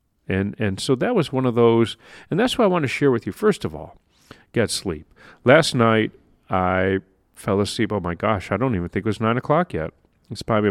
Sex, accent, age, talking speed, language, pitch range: male, American, 40-59, 230 wpm, English, 95-130 Hz